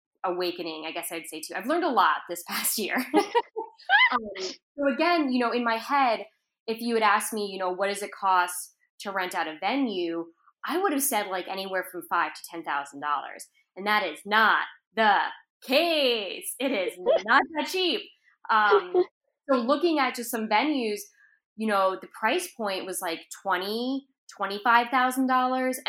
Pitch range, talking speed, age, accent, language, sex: 180-270 Hz, 180 wpm, 20-39, American, English, female